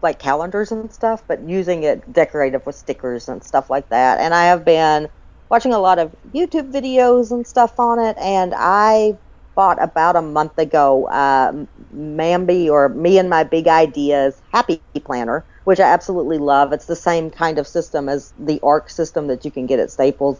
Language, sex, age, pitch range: English, female, 50-69, 130-190 Hz